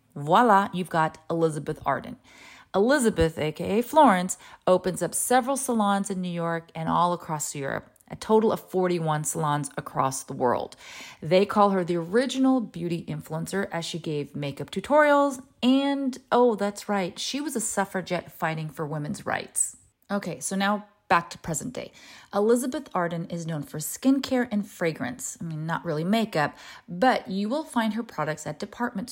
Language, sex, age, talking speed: English, female, 30-49, 165 wpm